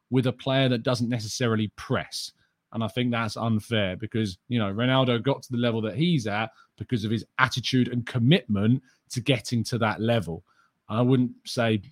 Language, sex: English, male